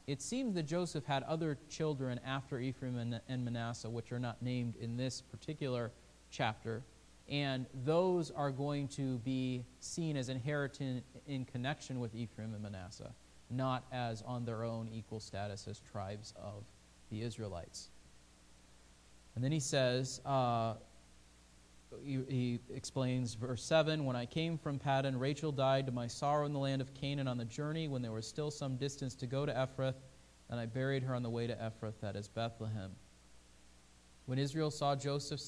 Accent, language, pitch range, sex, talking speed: American, English, 115-145 Hz, male, 165 wpm